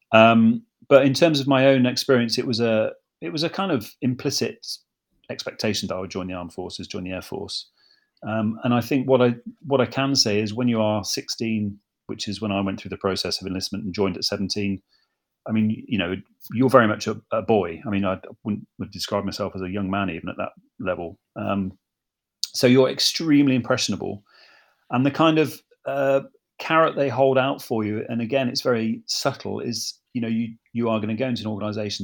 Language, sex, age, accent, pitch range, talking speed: English, male, 40-59, British, 100-125 Hz, 215 wpm